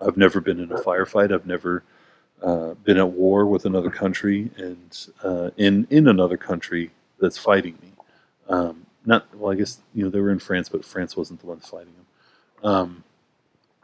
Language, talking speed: English, 185 wpm